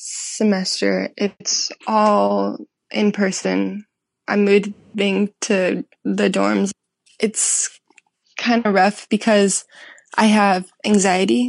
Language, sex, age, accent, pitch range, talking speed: English, female, 10-29, American, 190-215 Hz, 95 wpm